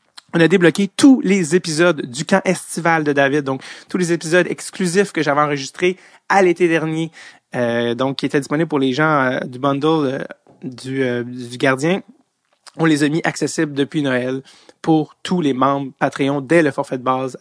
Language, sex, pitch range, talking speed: French, male, 130-160 Hz, 190 wpm